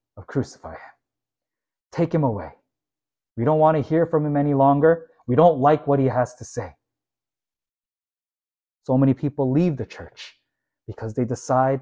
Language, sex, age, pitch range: Korean, male, 20-39, 120-170 Hz